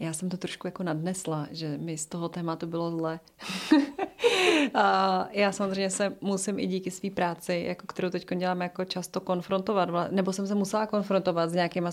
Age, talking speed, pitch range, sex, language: 30-49, 180 wpm, 180-205 Hz, female, Czech